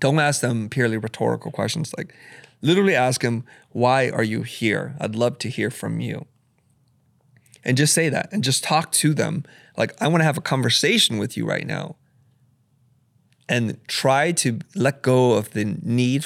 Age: 30-49